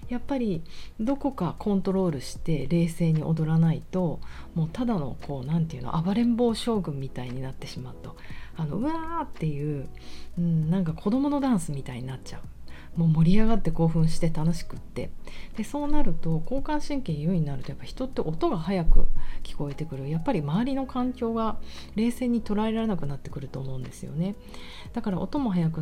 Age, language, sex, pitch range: 40-59, Japanese, female, 150-220 Hz